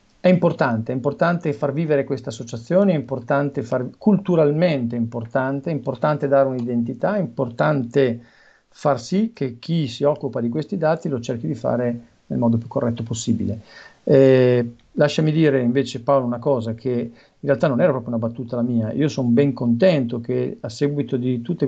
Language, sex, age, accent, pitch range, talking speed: Italian, male, 50-69, native, 120-145 Hz, 175 wpm